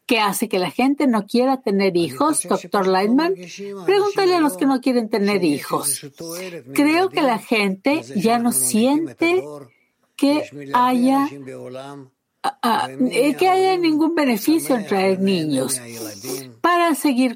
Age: 50-69